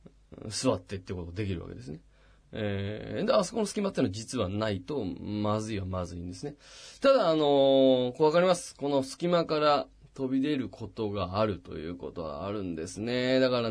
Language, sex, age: Japanese, male, 20-39